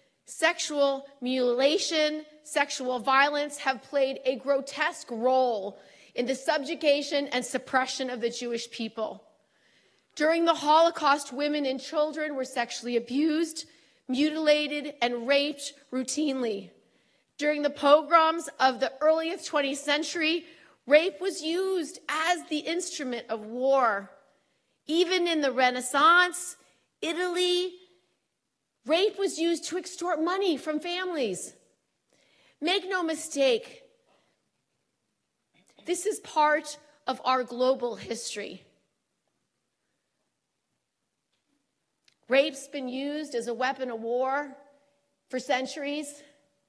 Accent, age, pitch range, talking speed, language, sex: American, 40-59, 260-325 Hz, 105 wpm, English, female